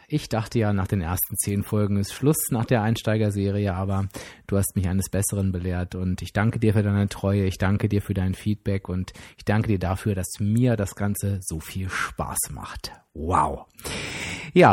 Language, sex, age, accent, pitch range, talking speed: German, male, 30-49, German, 100-125 Hz, 195 wpm